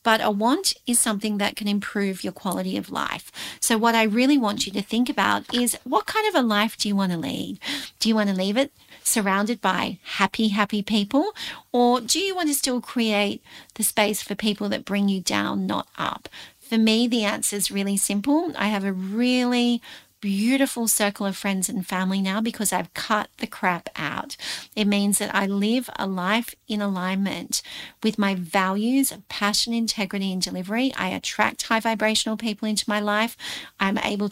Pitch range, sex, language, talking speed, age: 200-240 Hz, female, English, 195 wpm, 40-59